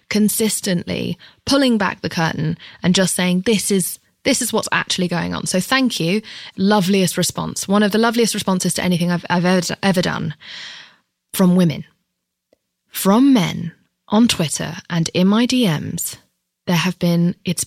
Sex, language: female, English